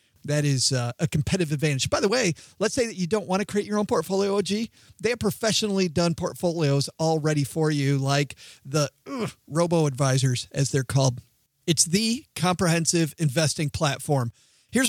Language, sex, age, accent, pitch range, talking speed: English, male, 40-59, American, 140-175 Hz, 170 wpm